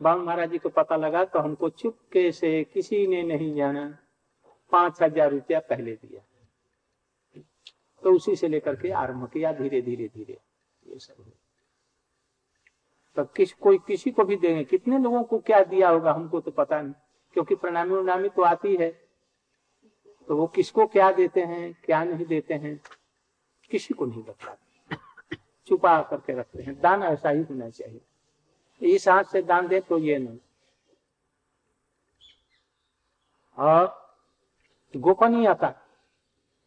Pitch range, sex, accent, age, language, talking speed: 155-205 Hz, male, native, 60-79, Hindi, 140 wpm